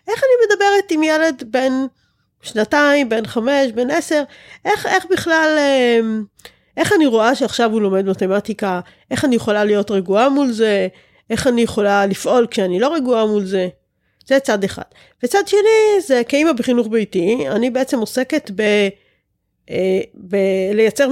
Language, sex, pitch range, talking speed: Hebrew, female, 200-295 Hz, 140 wpm